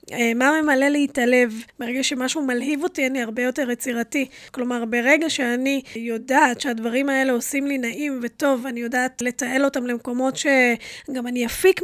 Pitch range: 250-315 Hz